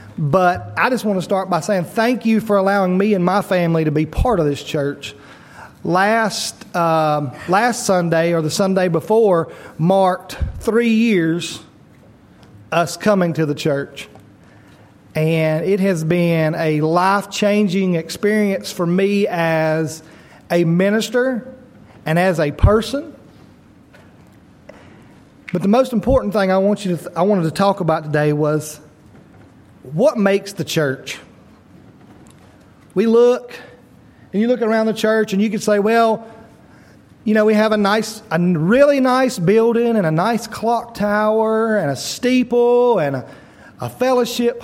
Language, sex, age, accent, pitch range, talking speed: English, male, 40-59, American, 160-220 Hz, 145 wpm